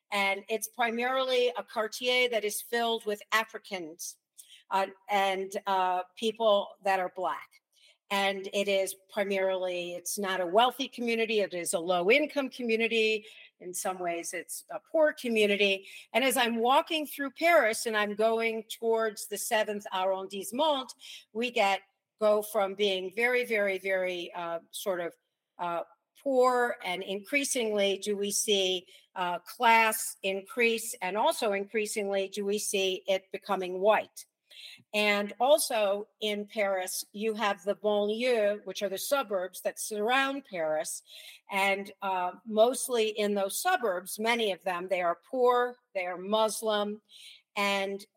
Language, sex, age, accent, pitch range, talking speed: English, female, 50-69, American, 190-225 Hz, 140 wpm